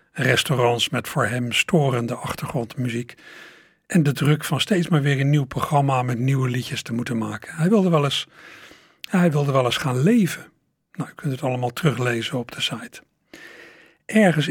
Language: Dutch